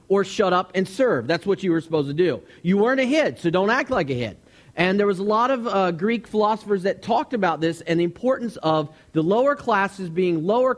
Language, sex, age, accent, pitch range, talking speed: English, male, 40-59, American, 160-225 Hz, 245 wpm